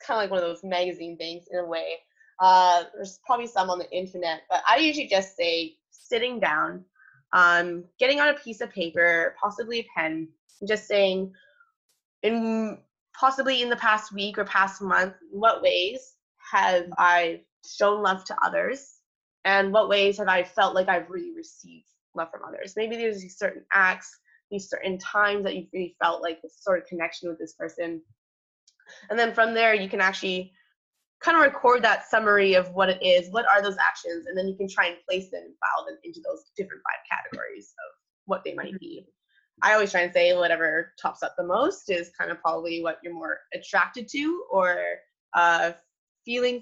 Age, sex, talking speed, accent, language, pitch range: 20-39, female, 195 wpm, American, English, 175-235 Hz